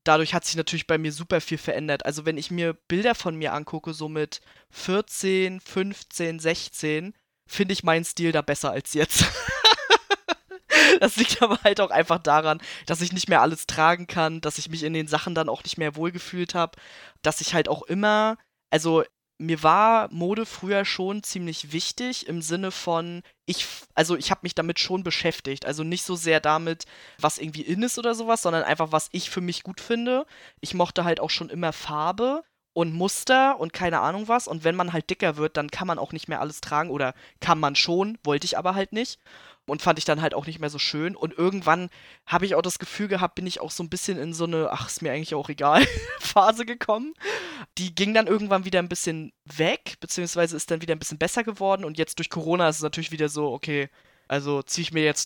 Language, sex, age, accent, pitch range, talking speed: German, female, 20-39, German, 155-195 Hz, 220 wpm